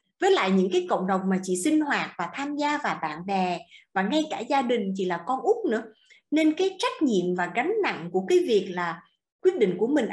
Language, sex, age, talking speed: Vietnamese, female, 20-39, 245 wpm